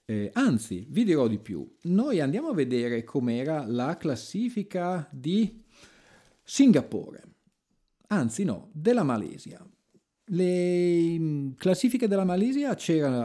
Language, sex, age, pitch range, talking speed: Italian, male, 40-59, 120-195 Hz, 110 wpm